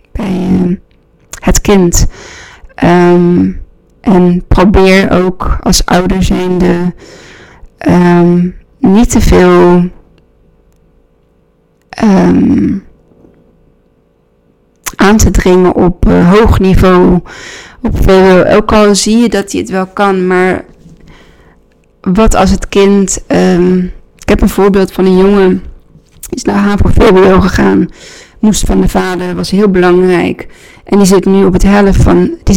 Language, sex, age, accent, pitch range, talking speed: Dutch, female, 20-39, Dutch, 175-200 Hz, 125 wpm